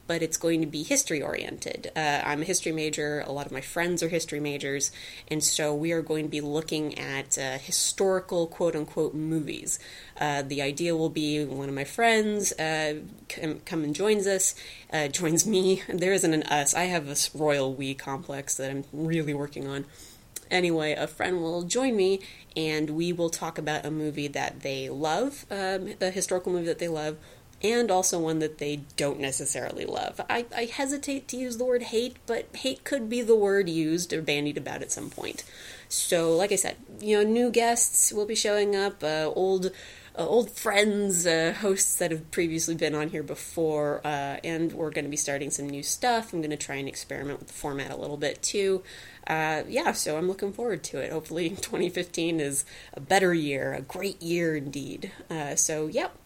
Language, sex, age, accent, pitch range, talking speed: English, female, 20-39, American, 150-190 Hz, 200 wpm